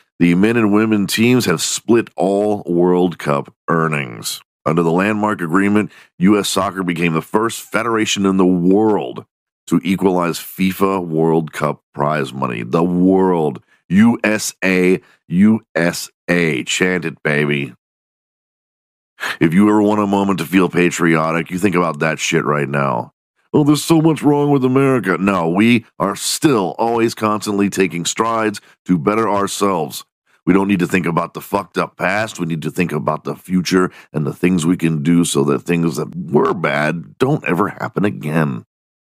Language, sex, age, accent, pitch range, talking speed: English, male, 50-69, American, 85-105 Hz, 160 wpm